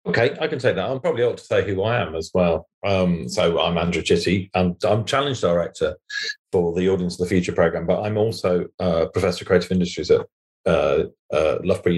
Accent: British